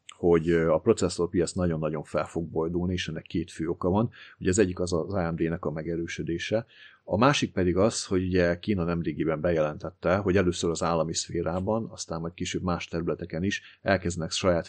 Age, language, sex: 30-49, Hungarian, male